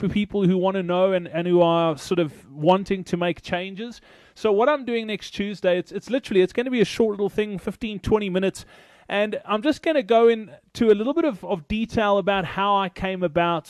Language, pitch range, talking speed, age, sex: English, 170-205 Hz, 235 wpm, 20-39, male